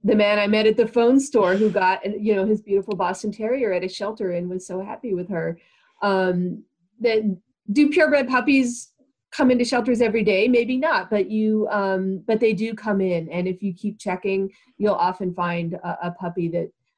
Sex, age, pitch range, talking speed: female, 40-59, 180-220 Hz, 200 wpm